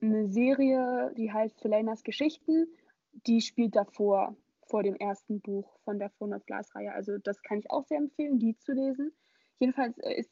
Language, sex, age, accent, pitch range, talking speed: German, female, 20-39, German, 215-275 Hz, 165 wpm